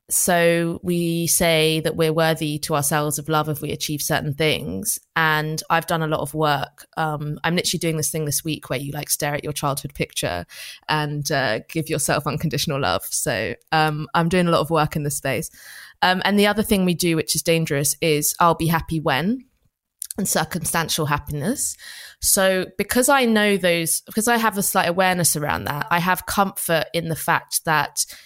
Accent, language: British, English